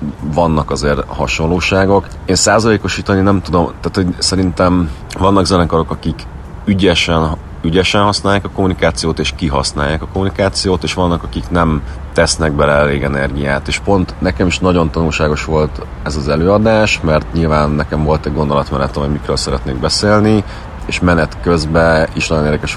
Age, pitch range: 30-49, 75-90 Hz